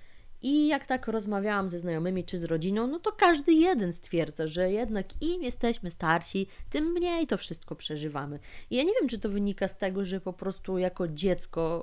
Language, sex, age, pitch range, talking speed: Polish, female, 20-39, 170-205 Hz, 195 wpm